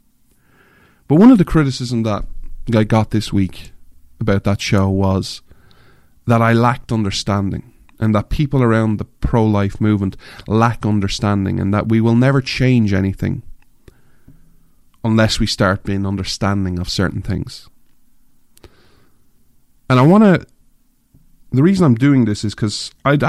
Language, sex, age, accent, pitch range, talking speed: English, male, 30-49, Irish, 100-125 Hz, 140 wpm